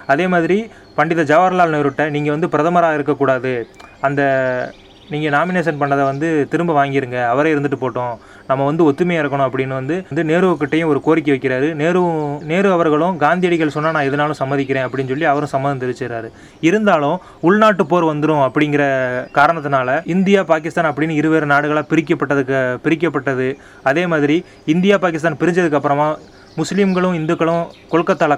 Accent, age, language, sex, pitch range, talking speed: native, 30-49, Tamil, male, 135-165 Hz, 135 wpm